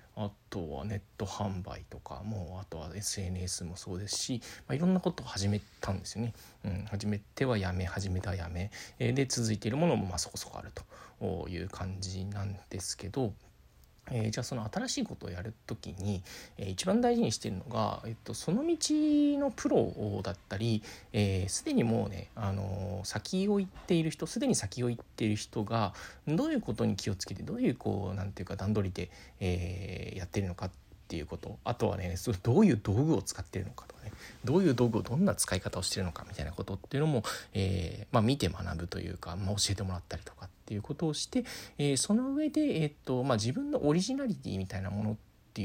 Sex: male